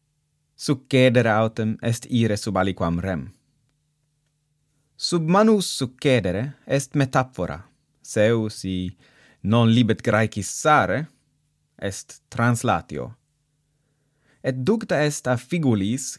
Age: 30-49